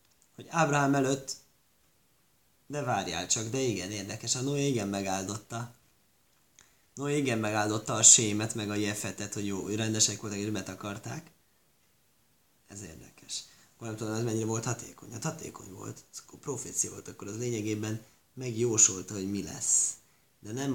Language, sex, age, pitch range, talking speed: Hungarian, male, 20-39, 105-140 Hz, 150 wpm